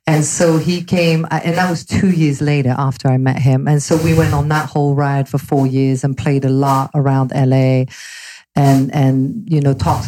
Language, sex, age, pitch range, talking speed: English, female, 40-59, 135-155 Hz, 215 wpm